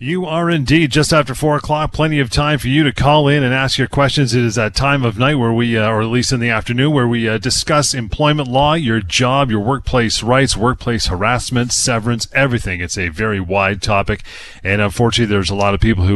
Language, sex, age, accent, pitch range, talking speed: English, male, 30-49, American, 100-130 Hz, 230 wpm